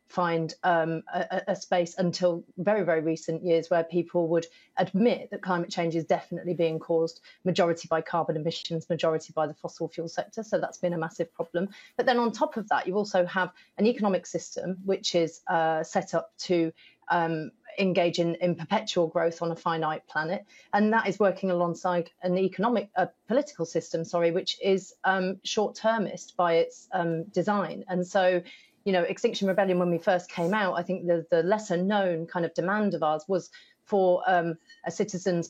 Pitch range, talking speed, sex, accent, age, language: 170-190 Hz, 185 wpm, female, British, 30-49, English